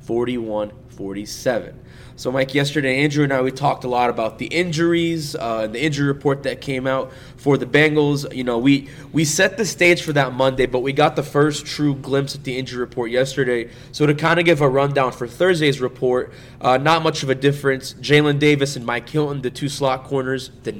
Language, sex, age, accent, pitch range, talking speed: English, male, 20-39, American, 125-150 Hz, 205 wpm